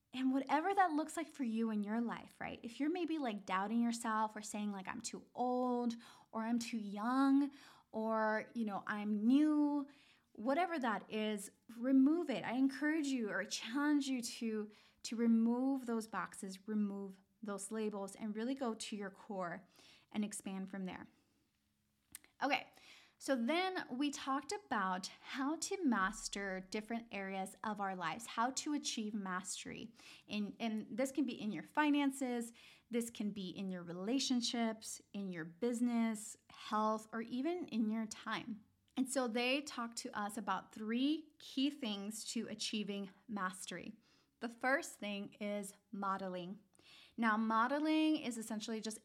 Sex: female